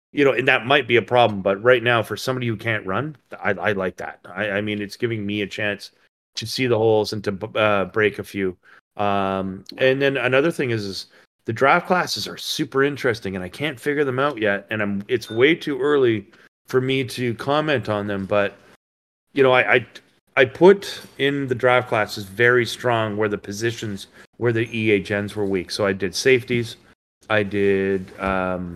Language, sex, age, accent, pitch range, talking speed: English, male, 30-49, American, 100-130 Hz, 205 wpm